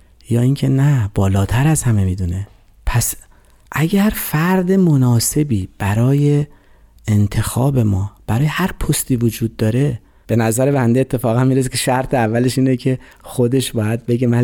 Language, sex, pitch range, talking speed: Persian, male, 110-155 Hz, 145 wpm